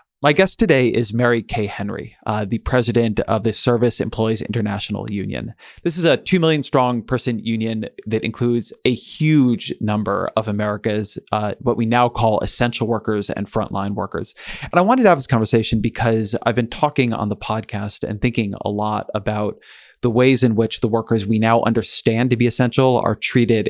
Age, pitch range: 30-49, 110-125 Hz